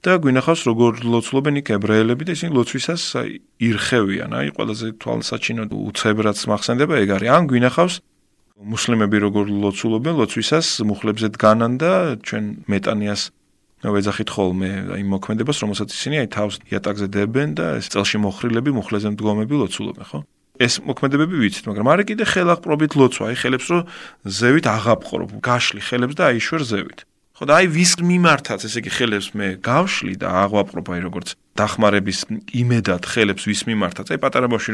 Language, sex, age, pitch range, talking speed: Ukrainian, male, 30-49, 105-145 Hz, 90 wpm